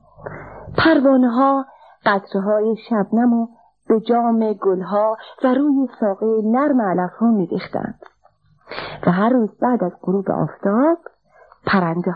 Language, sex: Persian, female